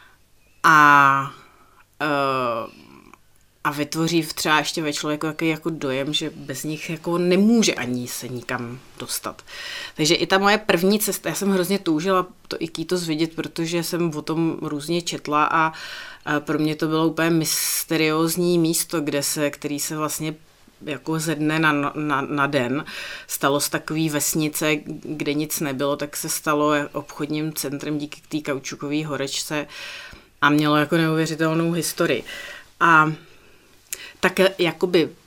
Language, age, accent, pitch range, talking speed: Czech, 30-49, native, 145-165 Hz, 145 wpm